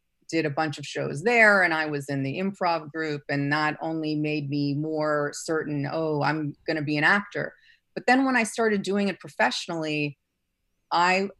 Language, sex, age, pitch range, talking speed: English, female, 30-49, 145-185 Hz, 185 wpm